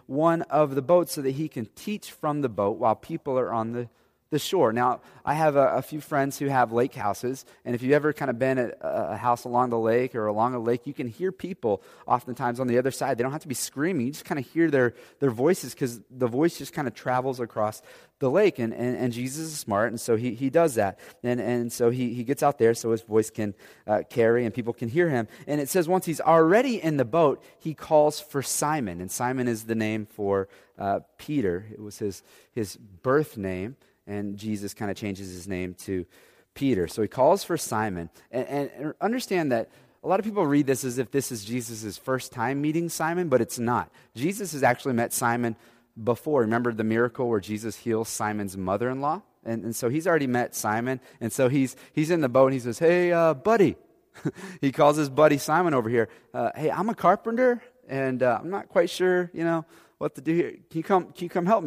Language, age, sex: English, 30-49, male